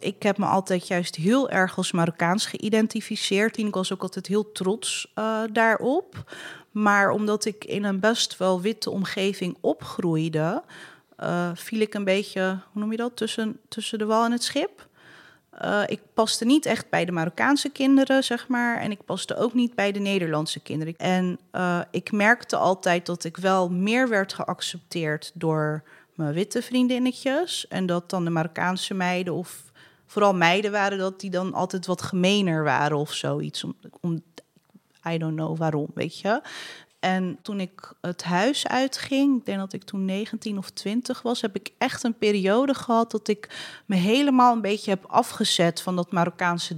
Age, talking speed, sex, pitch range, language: 30-49, 175 wpm, female, 175-220 Hz, Dutch